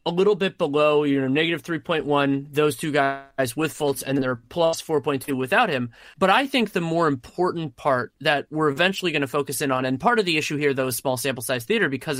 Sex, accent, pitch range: male, American, 140-185 Hz